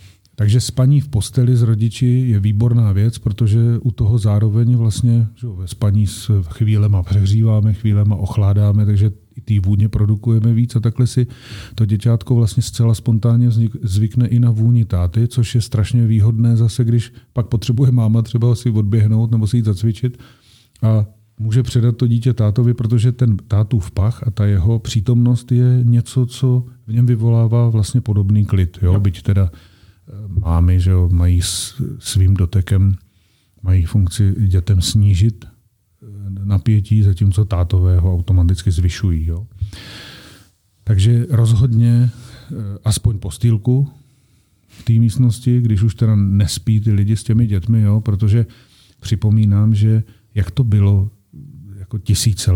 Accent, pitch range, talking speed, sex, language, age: native, 100-120 Hz, 145 wpm, male, Czech, 40-59